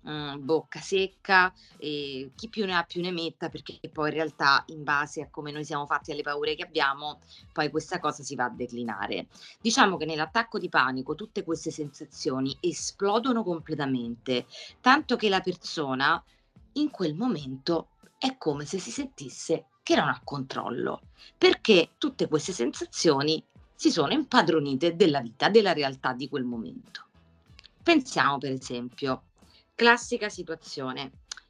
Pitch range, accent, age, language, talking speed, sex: 140-190 Hz, native, 30-49, Italian, 150 wpm, female